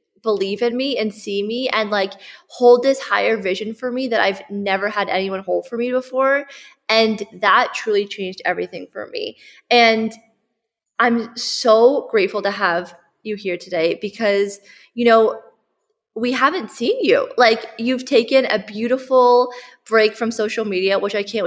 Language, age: English, 20-39